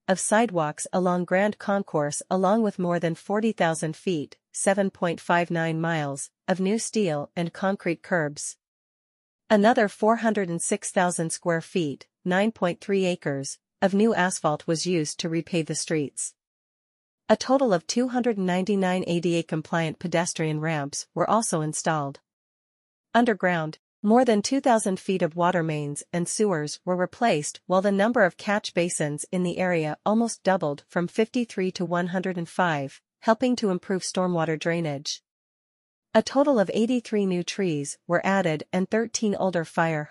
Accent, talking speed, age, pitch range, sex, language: American, 130 wpm, 40-59, 165-205 Hz, female, English